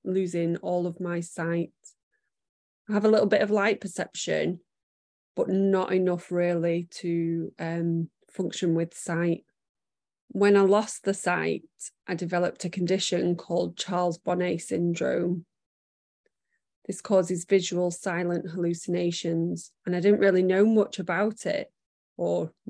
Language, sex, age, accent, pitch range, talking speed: English, female, 20-39, British, 170-190 Hz, 130 wpm